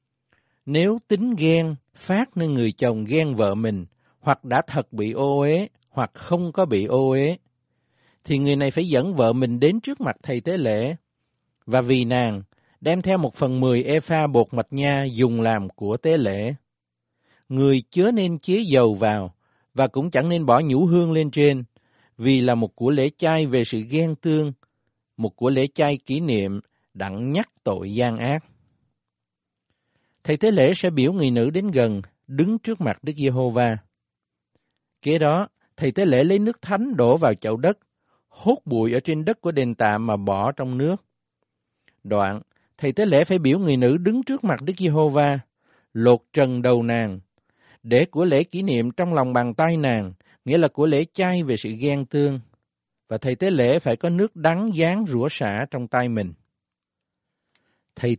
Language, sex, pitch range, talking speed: Vietnamese, male, 115-160 Hz, 185 wpm